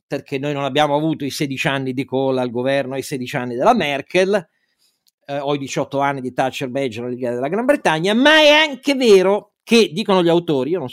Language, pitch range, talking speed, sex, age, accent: Italian, 130-195 Hz, 220 wpm, male, 40-59, native